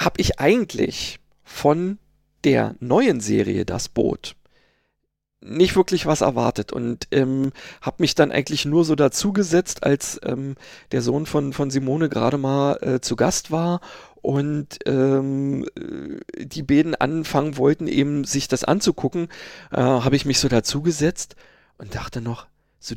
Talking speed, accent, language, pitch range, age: 145 wpm, German, German, 130-175 Hz, 40-59